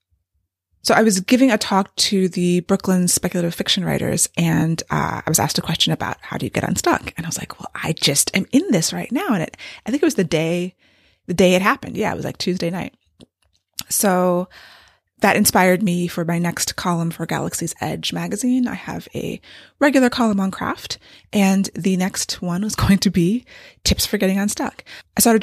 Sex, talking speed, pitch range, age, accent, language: female, 205 wpm, 170-215 Hz, 20-39, American, English